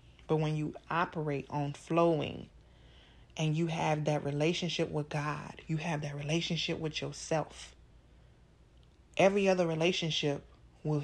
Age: 30-49